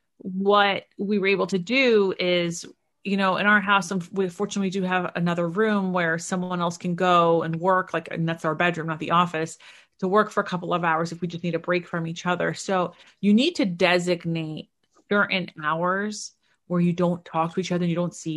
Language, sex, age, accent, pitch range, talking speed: English, female, 30-49, American, 170-200 Hz, 220 wpm